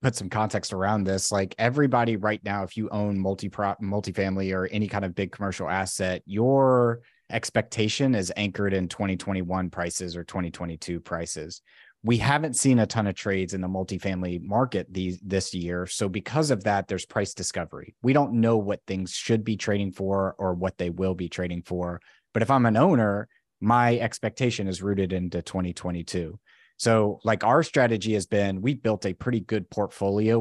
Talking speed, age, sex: 180 wpm, 30-49, male